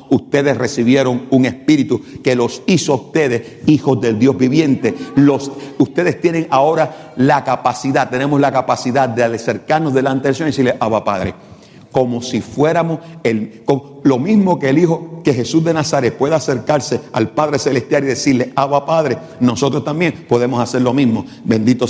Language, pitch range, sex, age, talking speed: English, 125-170 Hz, male, 50-69, 165 wpm